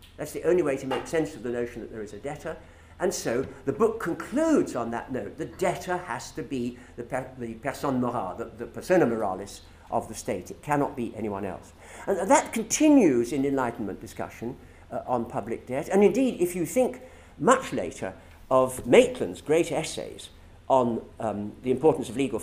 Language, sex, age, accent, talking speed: English, male, 60-79, British, 180 wpm